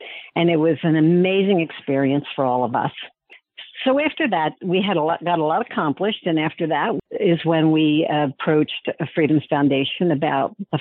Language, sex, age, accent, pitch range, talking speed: English, female, 60-79, American, 150-195 Hz, 170 wpm